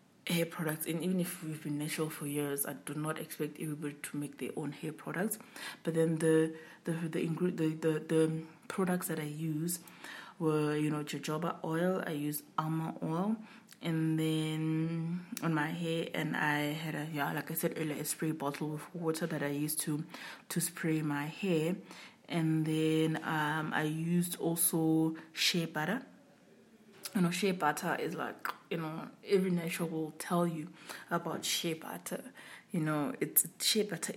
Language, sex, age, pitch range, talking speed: English, female, 20-39, 155-175 Hz, 170 wpm